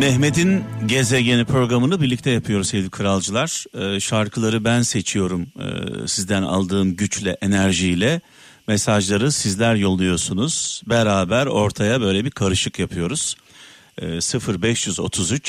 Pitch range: 100-130 Hz